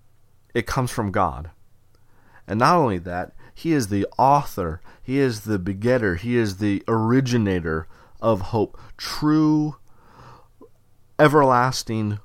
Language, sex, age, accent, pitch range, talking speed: English, male, 30-49, American, 100-125 Hz, 120 wpm